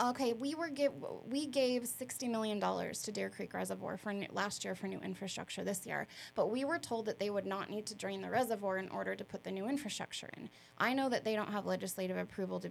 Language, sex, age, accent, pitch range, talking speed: English, female, 20-39, American, 190-230 Hz, 240 wpm